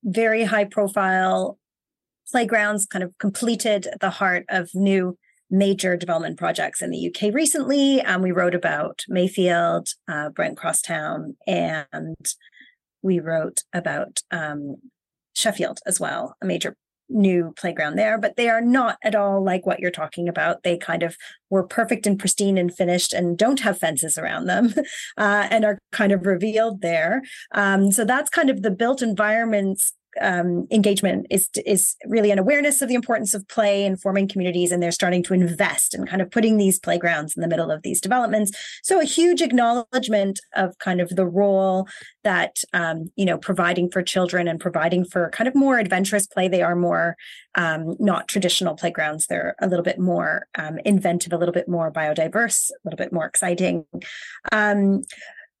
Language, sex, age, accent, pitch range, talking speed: English, female, 30-49, American, 175-220 Hz, 175 wpm